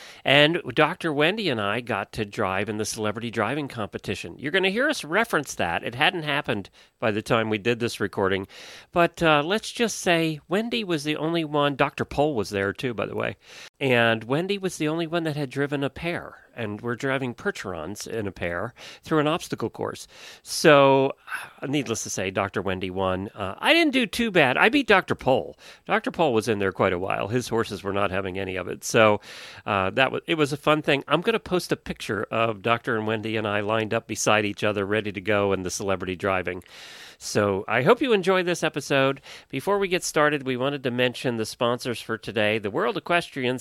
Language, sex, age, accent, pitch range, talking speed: English, male, 40-59, American, 105-145 Hz, 215 wpm